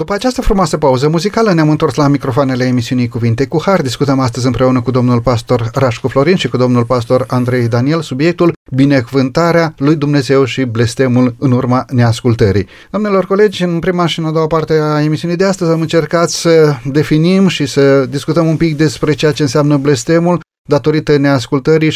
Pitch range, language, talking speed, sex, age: 130-170 Hz, Romanian, 180 wpm, male, 30-49